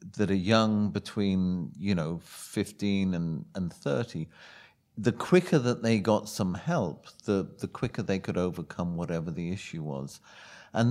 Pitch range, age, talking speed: 90-110 Hz, 50-69, 155 wpm